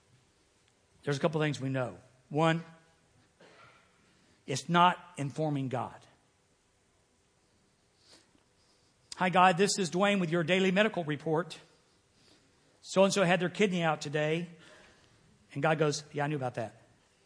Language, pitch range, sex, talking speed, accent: English, 145-225 Hz, male, 120 wpm, American